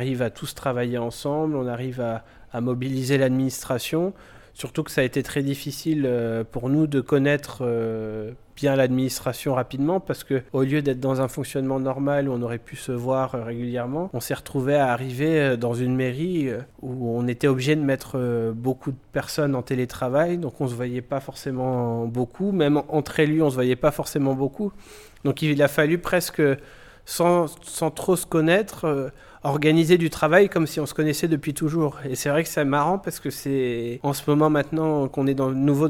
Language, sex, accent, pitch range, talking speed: French, male, French, 125-150 Hz, 195 wpm